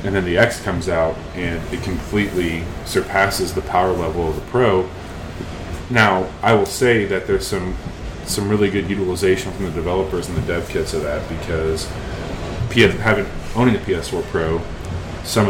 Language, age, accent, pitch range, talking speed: English, 30-49, American, 85-100 Hz, 165 wpm